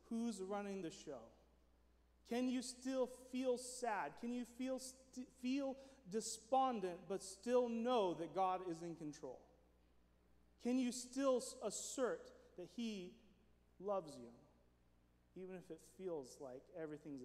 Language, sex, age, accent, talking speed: English, male, 30-49, American, 130 wpm